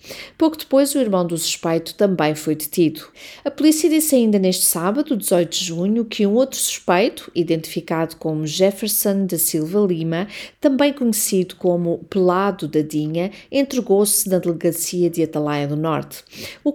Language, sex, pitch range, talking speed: Portuguese, female, 165-235 Hz, 150 wpm